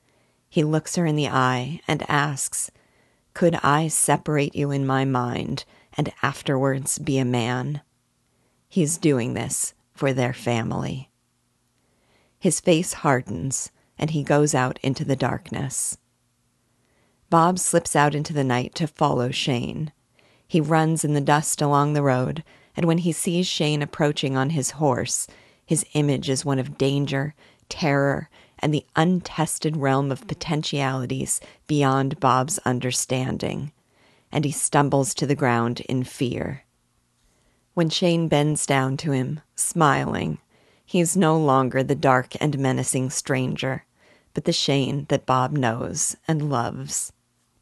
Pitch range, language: 130-155 Hz, English